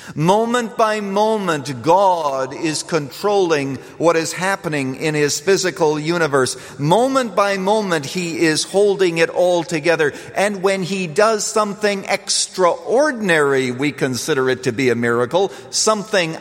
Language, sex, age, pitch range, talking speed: English, male, 50-69, 135-195 Hz, 130 wpm